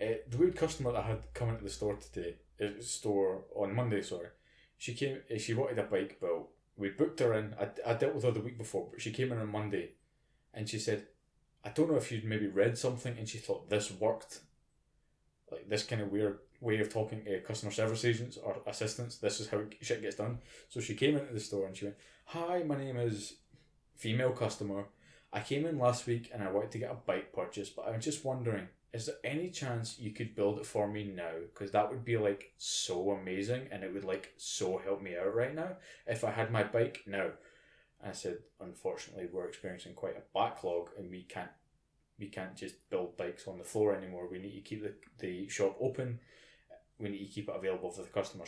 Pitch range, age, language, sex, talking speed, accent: 100-125 Hz, 20-39, English, male, 225 wpm, British